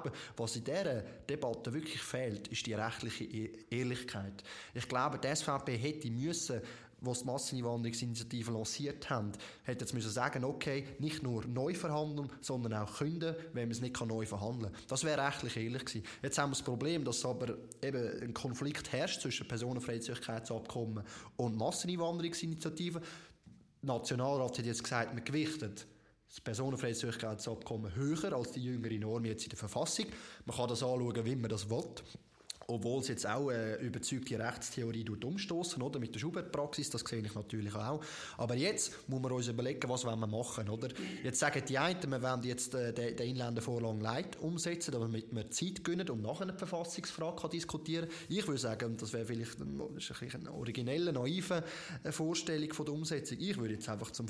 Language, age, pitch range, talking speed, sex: German, 20-39, 115-145 Hz, 175 wpm, male